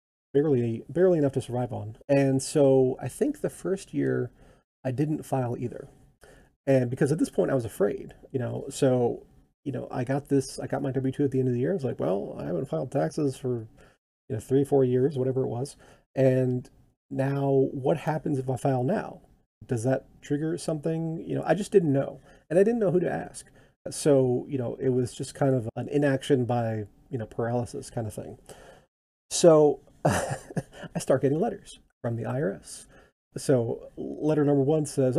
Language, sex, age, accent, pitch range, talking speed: English, male, 30-49, American, 125-145 Hz, 200 wpm